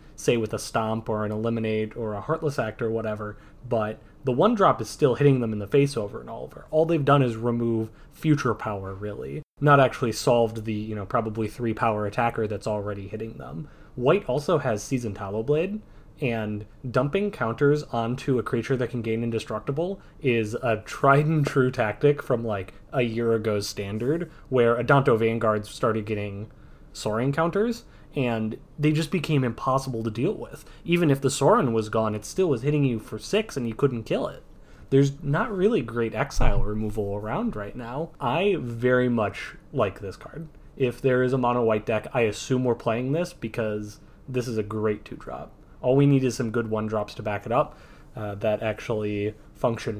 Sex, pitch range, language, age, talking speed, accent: male, 110-140 Hz, English, 20-39, 180 wpm, American